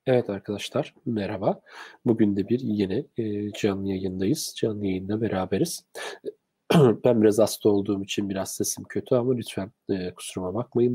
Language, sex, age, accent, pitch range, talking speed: Turkish, male, 40-59, native, 100-130 Hz, 145 wpm